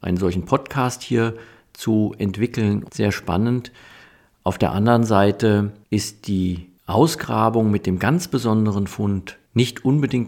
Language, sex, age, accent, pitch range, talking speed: German, male, 50-69, German, 95-115 Hz, 130 wpm